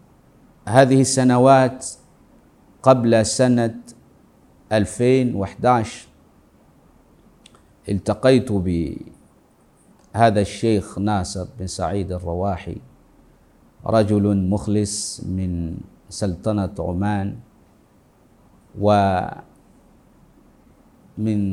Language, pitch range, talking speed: Arabic, 100-120 Hz, 50 wpm